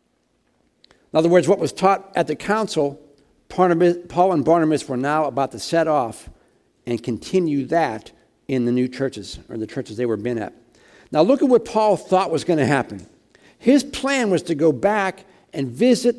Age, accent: 60-79, American